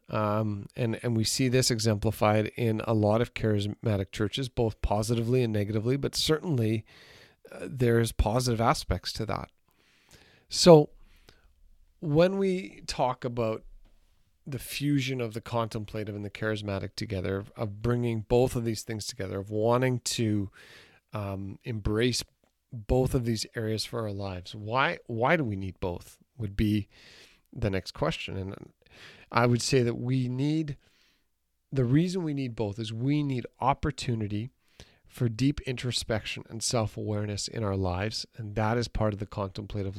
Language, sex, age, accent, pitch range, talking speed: English, male, 40-59, American, 105-130 Hz, 150 wpm